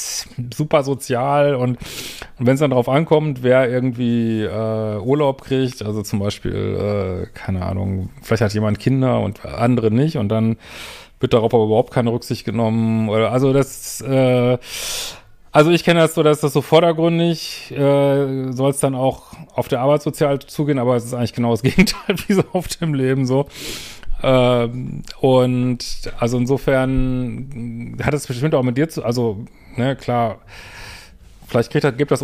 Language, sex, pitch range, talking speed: German, male, 115-140 Hz, 165 wpm